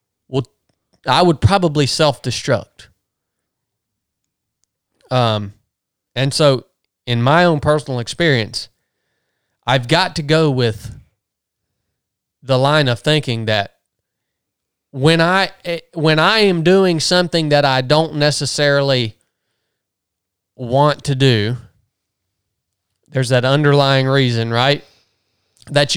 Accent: American